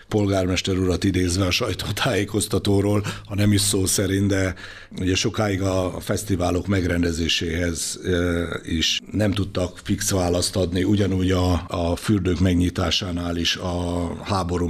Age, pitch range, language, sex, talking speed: 60-79, 85-95 Hz, Hungarian, male, 125 wpm